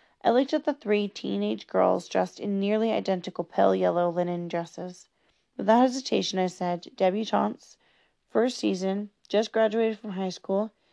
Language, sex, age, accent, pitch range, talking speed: English, female, 30-49, American, 175-220 Hz, 150 wpm